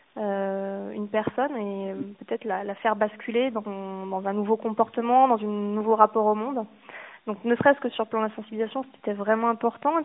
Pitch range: 205-240 Hz